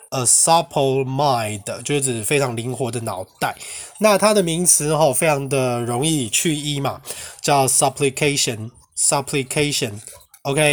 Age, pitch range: 20-39, 130-165 Hz